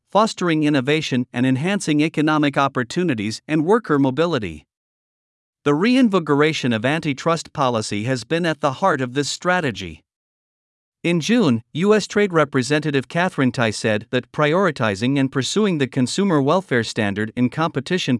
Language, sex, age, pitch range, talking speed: Vietnamese, male, 50-69, 130-170 Hz, 130 wpm